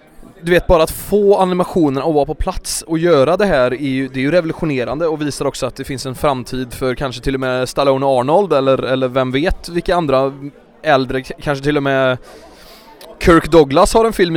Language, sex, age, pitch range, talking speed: English, male, 20-39, 135-170 Hz, 215 wpm